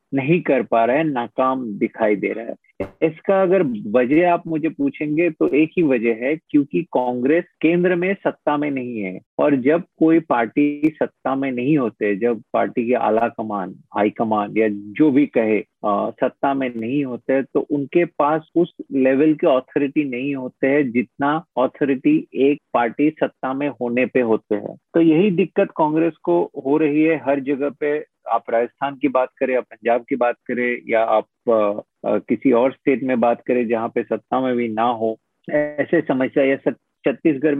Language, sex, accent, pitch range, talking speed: Hindi, male, native, 125-165 Hz, 180 wpm